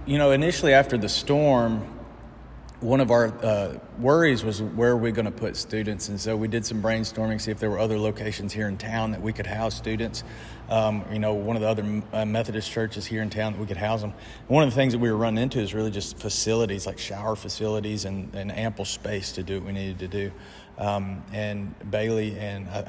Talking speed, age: 230 wpm, 40-59